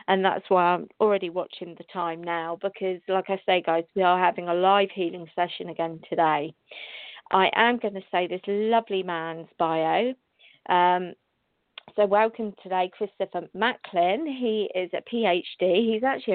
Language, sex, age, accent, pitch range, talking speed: English, female, 40-59, British, 185-220 Hz, 160 wpm